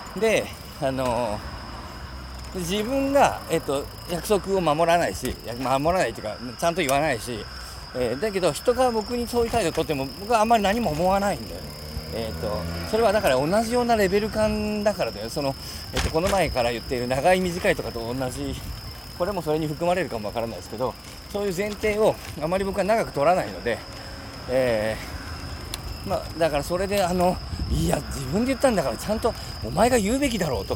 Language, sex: Japanese, male